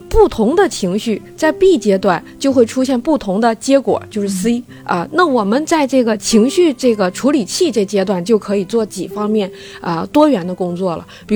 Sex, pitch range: female, 195-275 Hz